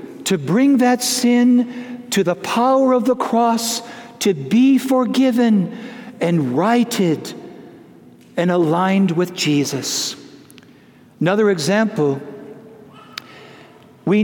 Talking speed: 95 wpm